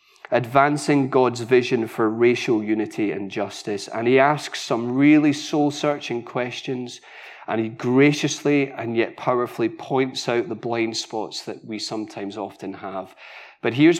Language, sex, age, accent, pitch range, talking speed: English, male, 30-49, British, 115-145 Hz, 140 wpm